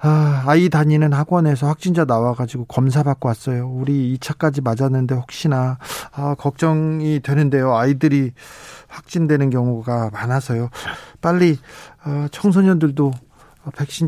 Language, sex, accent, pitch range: Korean, male, native, 140-190 Hz